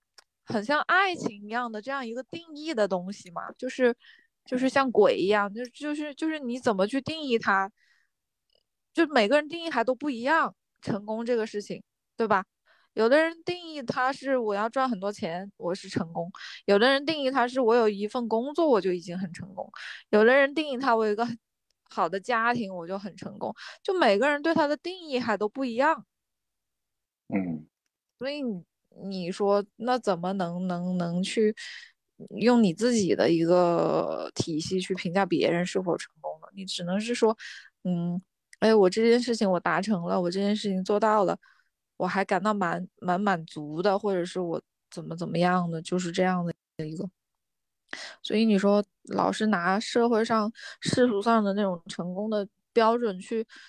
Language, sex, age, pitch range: Chinese, female, 20-39, 190-250 Hz